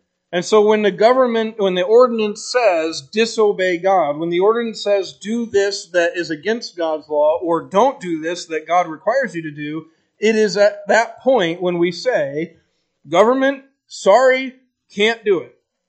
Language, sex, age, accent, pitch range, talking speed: English, male, 40-59, American, 170-230 Hz, 170 wpm